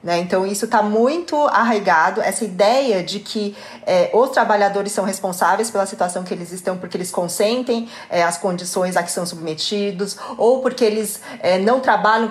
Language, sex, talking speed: Portuguese, female, 155 wpm